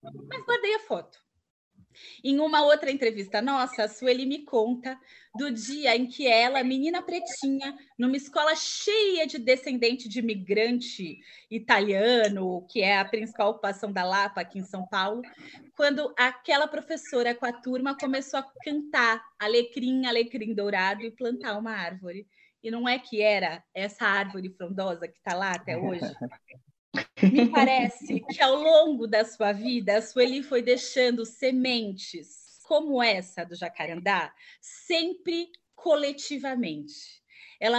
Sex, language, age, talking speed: female, Portuguese, 20-39, 140 wpm